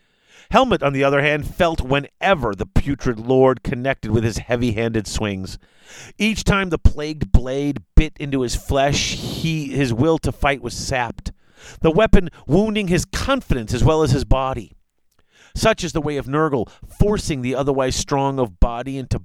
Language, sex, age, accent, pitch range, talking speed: English, male, 40-59, American, 120-160 Hz, 165 wpm